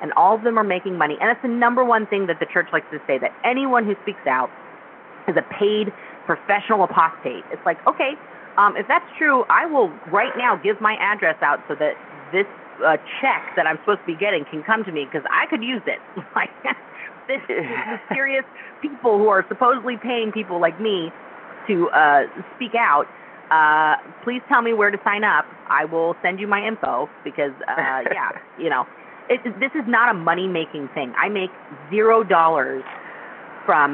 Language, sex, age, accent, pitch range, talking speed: English, female, 30-49, American, 155-220 Hz, 200 wpm